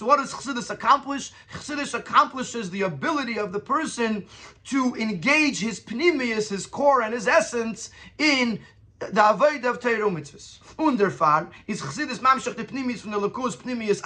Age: 30-49